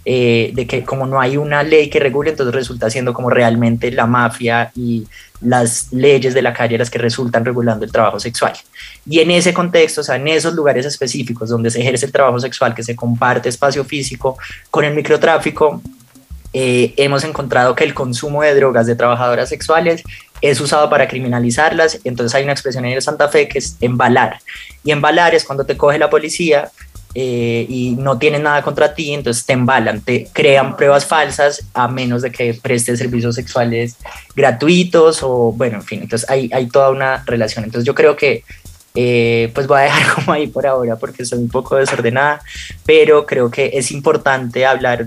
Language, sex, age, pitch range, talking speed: Spanish, male, 20-39, 120-145 Hz, 190 wpm